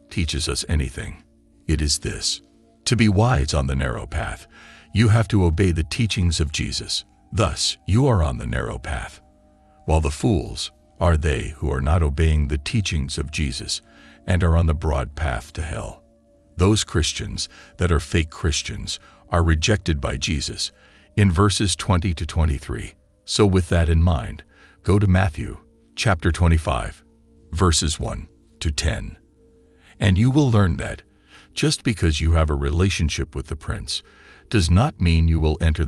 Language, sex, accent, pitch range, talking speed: English, male, American, 75-105 Hz, 165 wpm